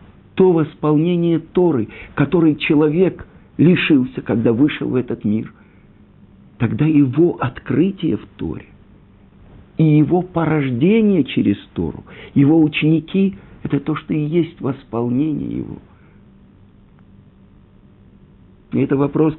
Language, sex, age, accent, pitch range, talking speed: Russian, male, 50-69, native, 125-160 Hz, 100 wpm